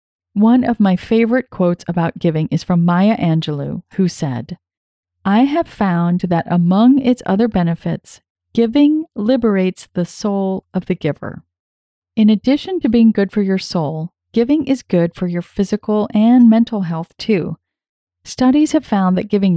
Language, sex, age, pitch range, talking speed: English, female, 30-49, 165-235 Hz, 155 wpm